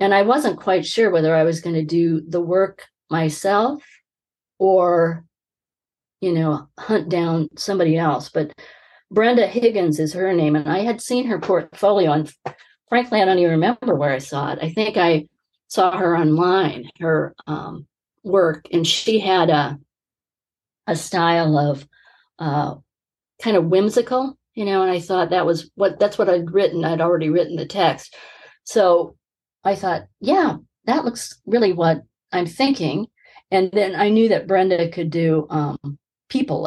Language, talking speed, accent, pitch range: English, 165 wpm, American, 155-195 Hz